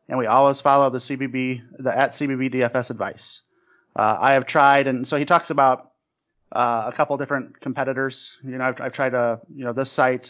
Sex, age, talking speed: male, 30-49, 205 wpm